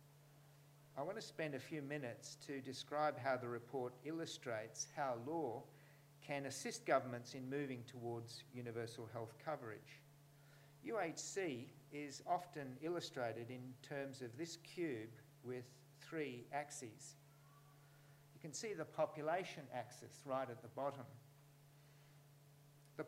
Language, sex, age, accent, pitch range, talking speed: English, male, 50-69, Australian, 125-145 Hz, 120 wpm